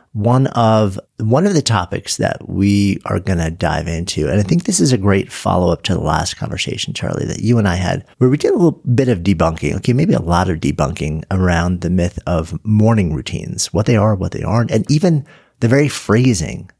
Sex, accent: male, American